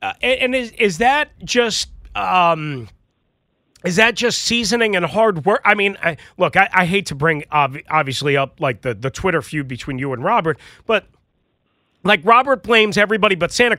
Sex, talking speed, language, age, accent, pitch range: male, 185 wpm, English, 40-59, American, 175-235 Hz